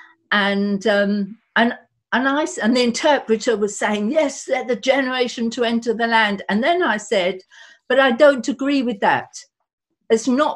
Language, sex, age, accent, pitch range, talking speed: English, female, 50-69, British, 195-245 Hz, 170 wpm